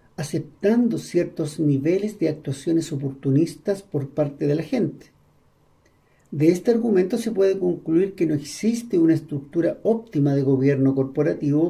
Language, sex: Spanish, male